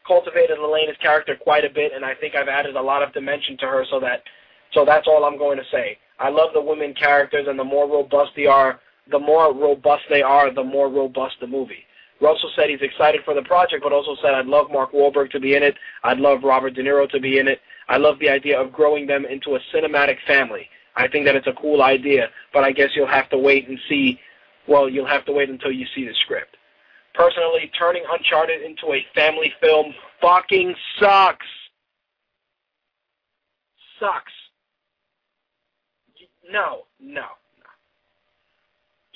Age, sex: 20-39, male